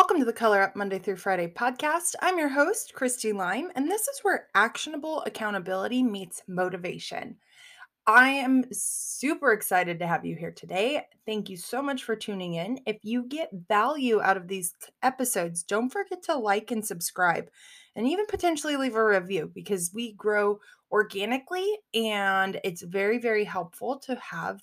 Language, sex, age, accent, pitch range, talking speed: English, female, 20-39, American, 195-275 Hz, 170 wpm